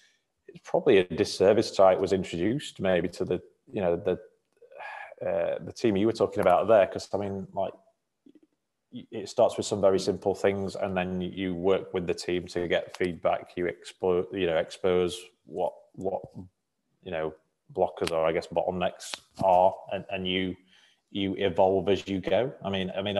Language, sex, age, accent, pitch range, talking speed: English, male, 20-39, British, 90-105 Hz, 175 wpm